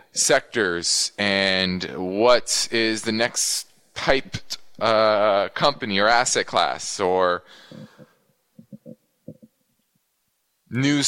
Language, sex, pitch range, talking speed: English, male, 110-150 Hz, 75 wpm